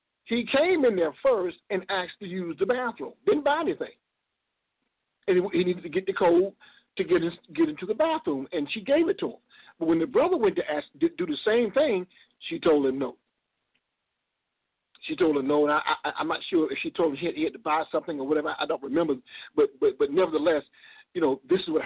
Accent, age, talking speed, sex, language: American, 50-69, 235 wpm, male, English